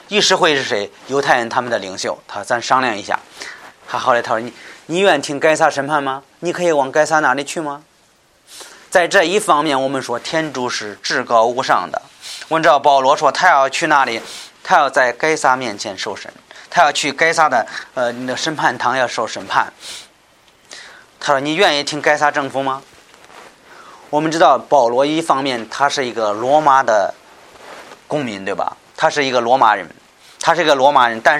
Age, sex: 30-49, male